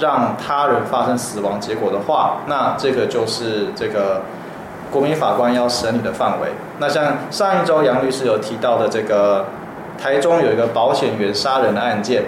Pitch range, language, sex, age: 120-150 Hz, Chinese, male, 20-39